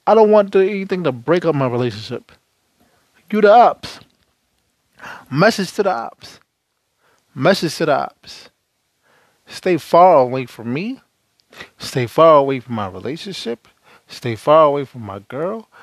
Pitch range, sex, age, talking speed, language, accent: 115-180 Hz, male, 20-39, 140 wpm, English, American